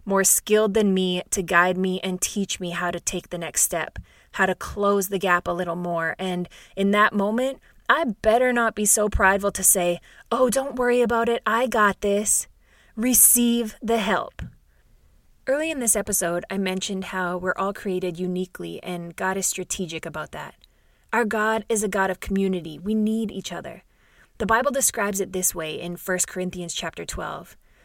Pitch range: 180-225 Hz